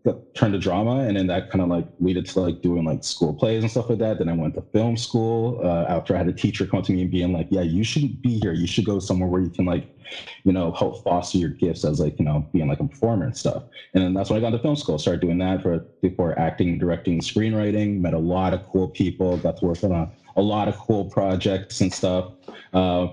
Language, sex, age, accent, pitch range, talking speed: English, male, 20-39, American, 90-115 Hz, 270 wpm